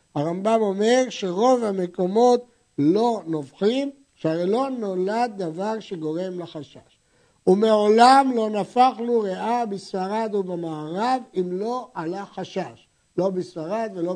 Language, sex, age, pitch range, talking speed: Hebrew, male, 60-79, 170-240 Hz, 110 wpm